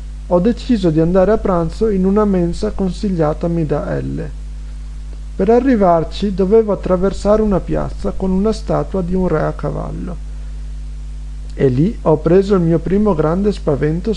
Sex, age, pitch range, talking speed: male, 50-69, 145-195 Hz, 150 wpm